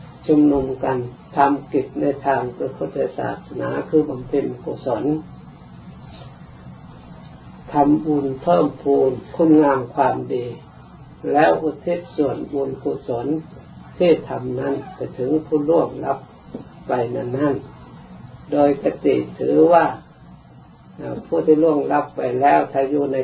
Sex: male